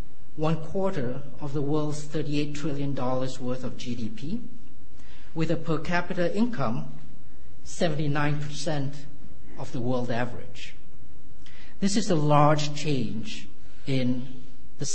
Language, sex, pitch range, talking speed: English, male, 125-160 Hz, 110 wpm